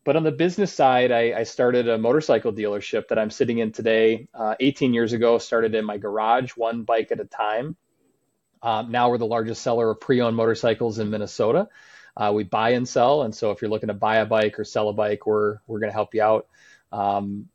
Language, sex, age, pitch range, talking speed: English, male, 20-39, 110-125 Hz, 225 wpm